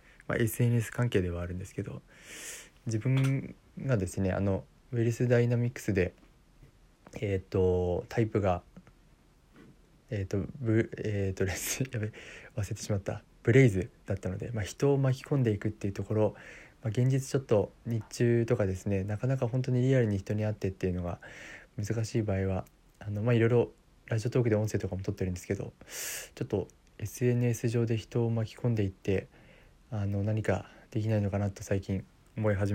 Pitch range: 100-120 Hz